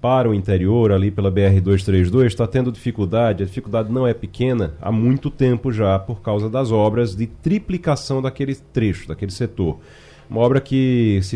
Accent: Brazilian